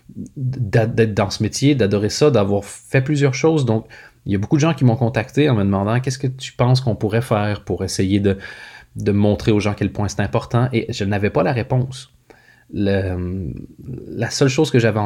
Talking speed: 220 wpm